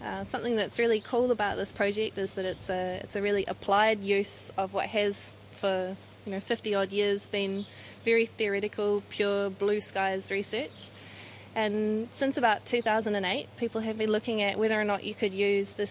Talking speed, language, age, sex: 185 wpm, English, 20-39, female